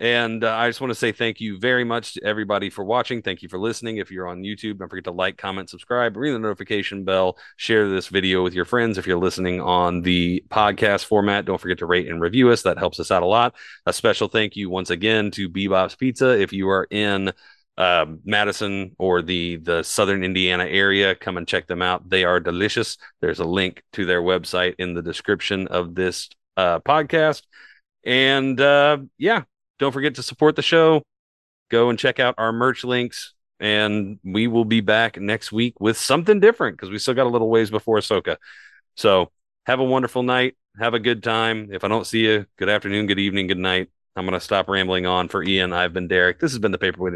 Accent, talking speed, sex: American, 220 wpm, male